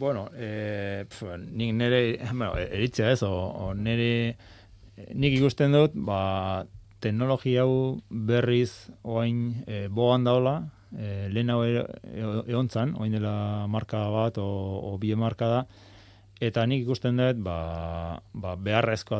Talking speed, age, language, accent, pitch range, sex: 125 wpm, 20-39, Spanish, Spanish, 95-115 Hz, male